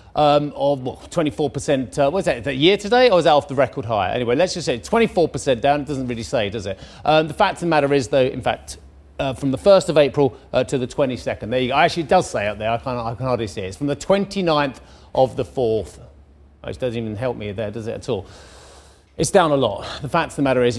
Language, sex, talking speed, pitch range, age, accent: English, male, 270 wpm, 120-180 Hz, 40-59, British